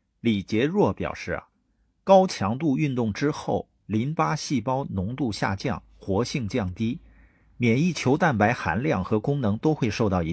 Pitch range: 95-140 Hz